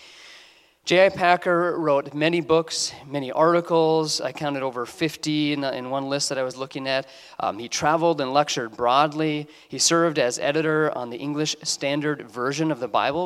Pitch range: 120-155 Hz